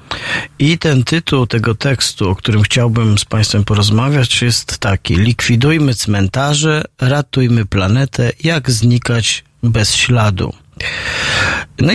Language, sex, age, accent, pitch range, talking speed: Polish, male, 40-59, native, 110-130 Hz, 110 wpm